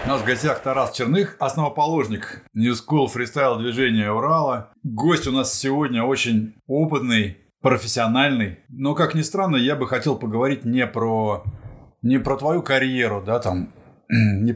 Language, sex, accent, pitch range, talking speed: Russian, male, native, 110-135 Hz, 150 wpm